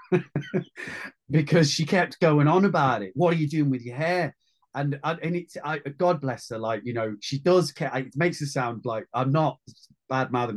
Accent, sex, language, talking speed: British, male, English, 200 wpm